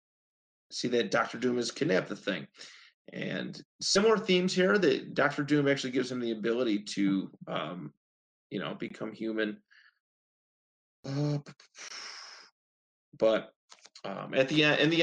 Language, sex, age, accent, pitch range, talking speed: English, male, 30-49, American, 110-145 Hz, 130 wpm